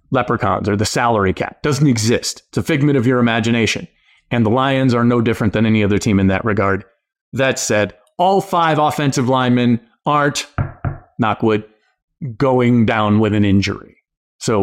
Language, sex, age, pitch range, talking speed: English, male, 30-49, 115-155 Hz, 165 wpm